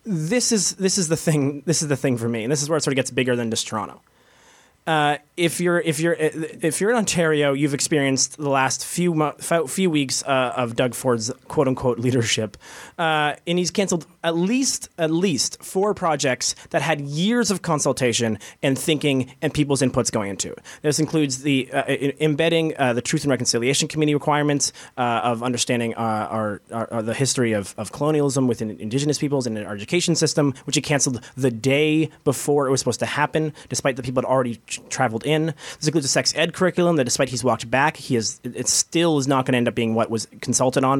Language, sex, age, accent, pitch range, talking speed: English, male, 20-39, American, 125-160 Hz, 215 wpm